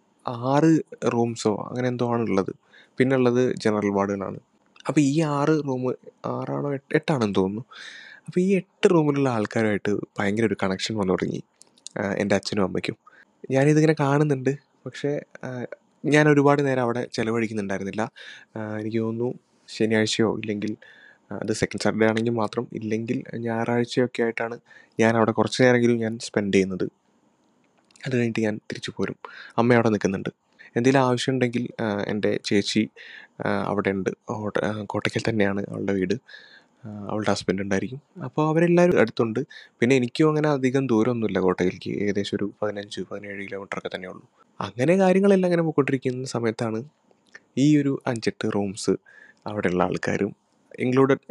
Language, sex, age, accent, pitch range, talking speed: Malayalam, male, 20-39, native, 105-135 Hz, 125 wpm